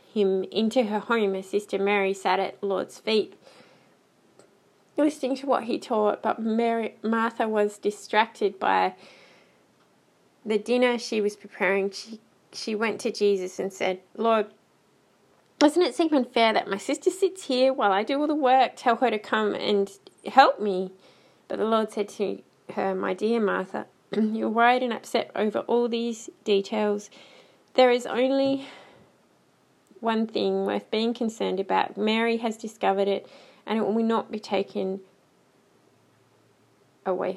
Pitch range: 195-235 Hz